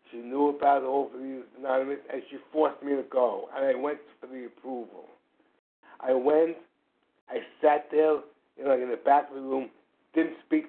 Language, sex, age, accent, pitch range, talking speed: English, male, 60-79, American, 130-150 Hz, 180 wpm